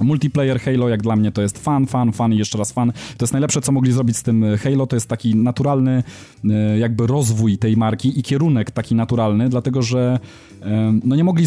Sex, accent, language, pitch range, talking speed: male, native, Polish, 115-140 Hz, 210 wpm